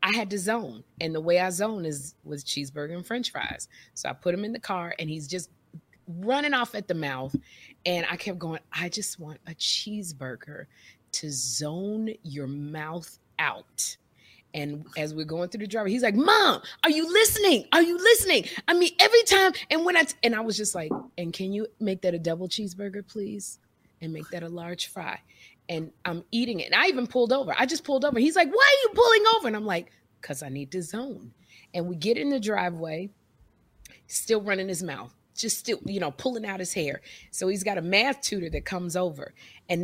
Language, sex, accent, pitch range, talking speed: English, female, American, 150-225 Hz, 215 wpm